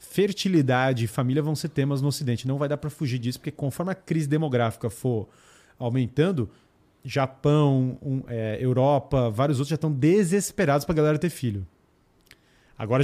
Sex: male